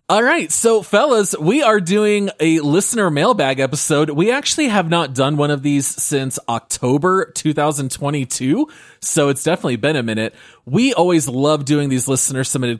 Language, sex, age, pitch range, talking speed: English, male, 30-49, 120-170 Hz, 165 wpm